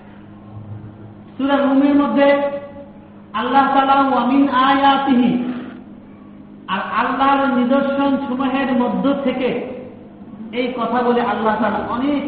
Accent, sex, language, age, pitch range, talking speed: native, male, Bengali, 50-69, 190-275 Hz, 75 wpm